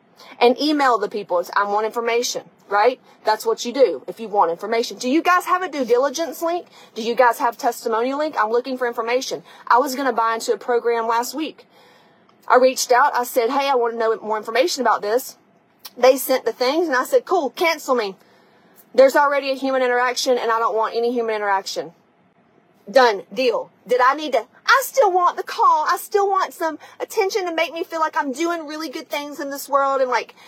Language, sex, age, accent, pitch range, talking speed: English, female, 30-49, American, 230-315 Hz, 220 wpm